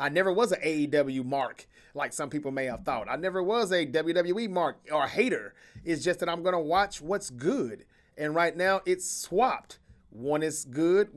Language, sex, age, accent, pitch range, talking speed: English, male, 30-49, American, 150-215 Hz, 200 wpm